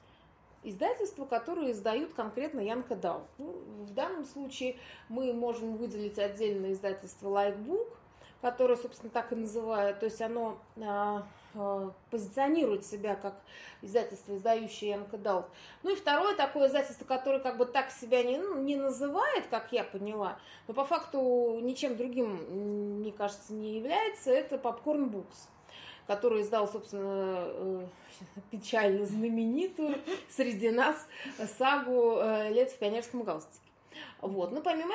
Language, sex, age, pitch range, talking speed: Russian, female, 20-39, 205-265 Hz, 130 wpm